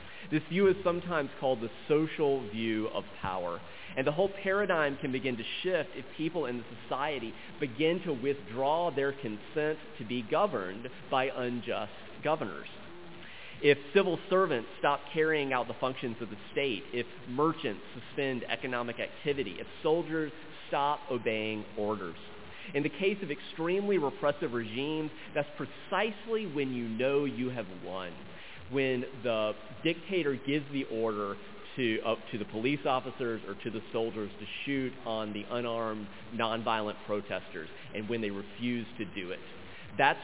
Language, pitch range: English, 115-150 Hz